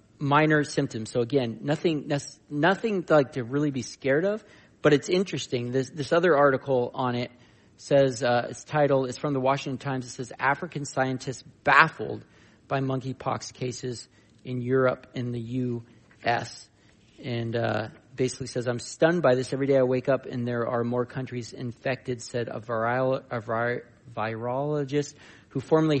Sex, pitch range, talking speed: male, 120-135 Hz, 165 wpm